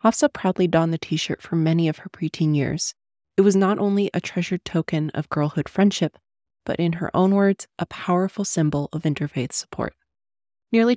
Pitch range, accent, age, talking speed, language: 150-185 Hz, American, 20-39, 180 wpm, English